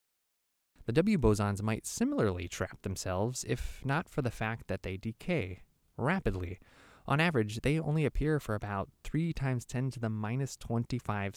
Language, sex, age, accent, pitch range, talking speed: English, male, 20-39, American, 95-130 Hz, 160 wpm